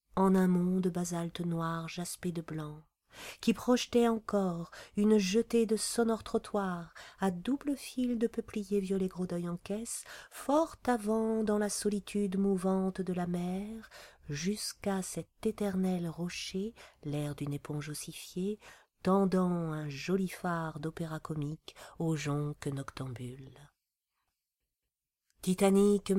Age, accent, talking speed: 40-59, French, 120 wpm